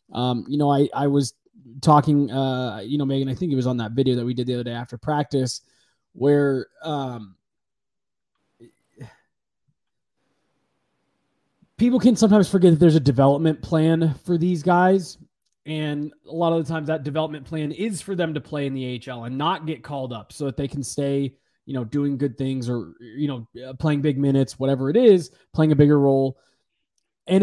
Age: 20-39